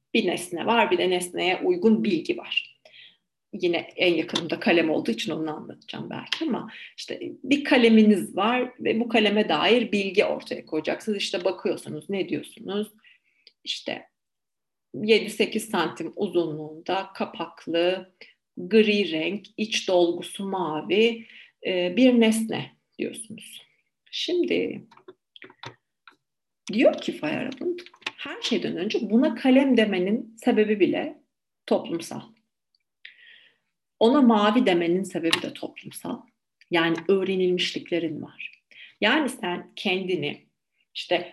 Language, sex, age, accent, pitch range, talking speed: Turkish, female, 40-59, native, 180-245 Hz, 105 wpm